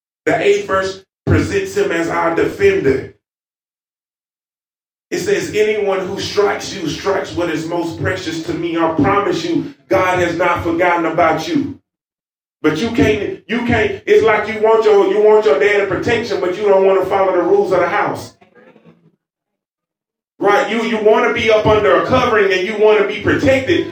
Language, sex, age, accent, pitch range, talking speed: English, male, 30-49, American, 180-265 Hz, 185 wpm